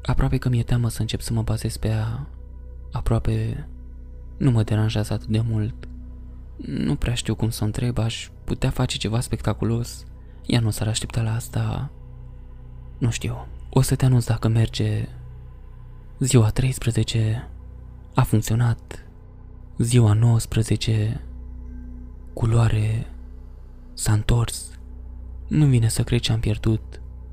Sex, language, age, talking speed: male, Romanian, 20-39, 130 wpm